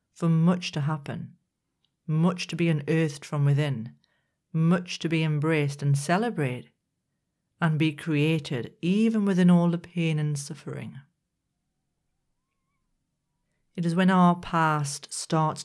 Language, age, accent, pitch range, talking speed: English, 40-59, British, 150-175 Hz, 125 wpm